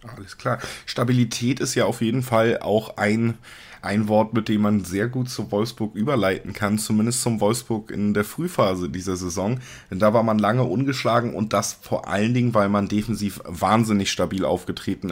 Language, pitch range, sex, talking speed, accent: German, 105-120 Hz, male, 185 wpm, German